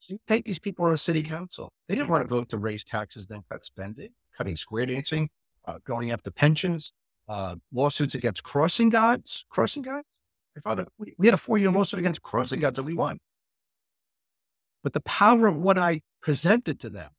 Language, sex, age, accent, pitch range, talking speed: English, male, 50-69, American, 115-195 Hz, 190 wpm